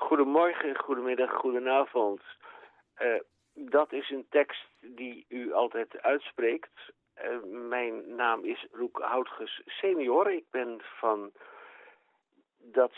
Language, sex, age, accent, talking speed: Dutch, male, 50-69, Dutch, 105 wpm